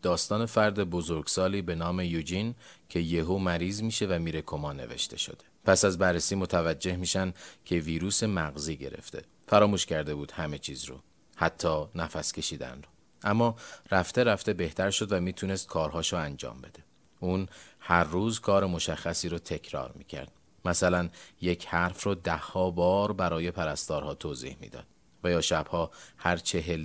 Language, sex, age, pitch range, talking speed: Persian, male, 30-49, 80-95 Hz, 150 wpm